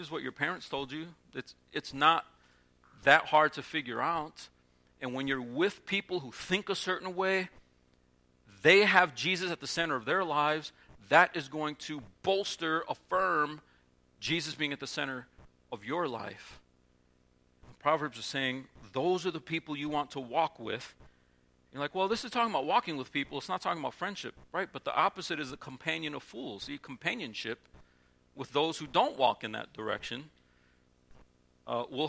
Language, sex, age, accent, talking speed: English, male, 40-59, American, 180 wpm